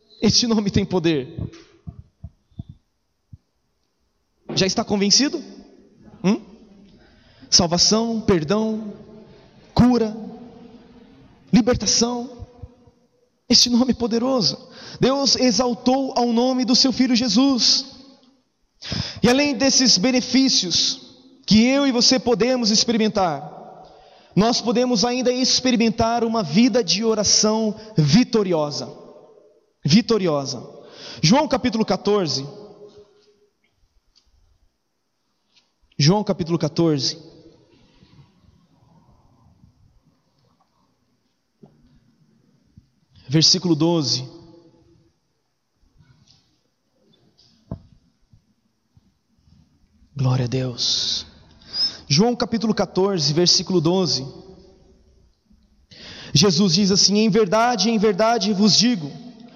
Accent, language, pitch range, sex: Brazilian, Portuguese, 165-240 Hz, male